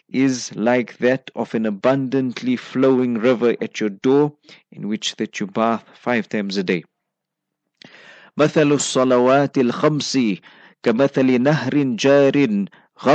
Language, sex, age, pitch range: English, male, 50-69, 115-150 Hz